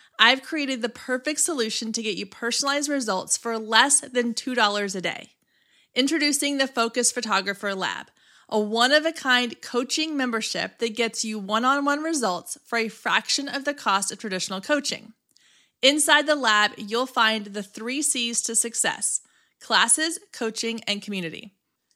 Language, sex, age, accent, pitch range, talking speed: English, female, 30-49, American, 215-260 Hz, 150 wpm